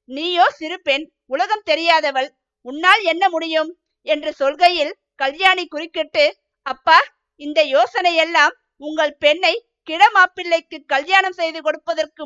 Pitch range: 290-350 Hz